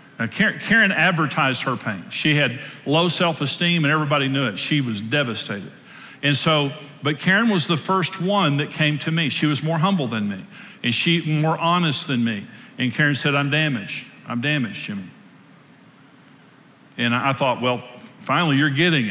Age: 50-69